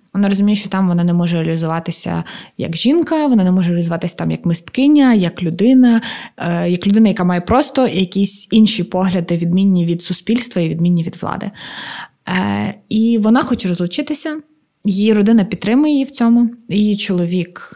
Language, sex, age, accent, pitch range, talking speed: Ukrainian, female, 20-39, native, 175-230 Hz, 155 wpm